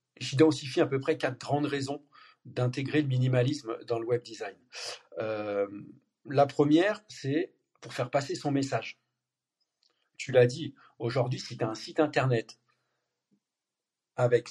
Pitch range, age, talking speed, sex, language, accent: 125-155 Hz, 50-69, 140 wpm, male, French, French